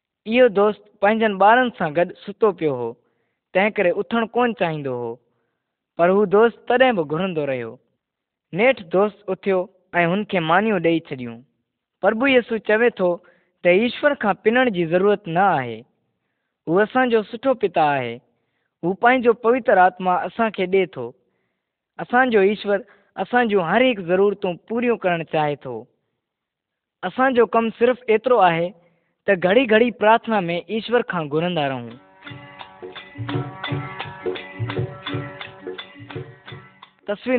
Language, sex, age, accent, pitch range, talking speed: Kannada, female, 20-39, native, 165-225 Hz, 70 wpm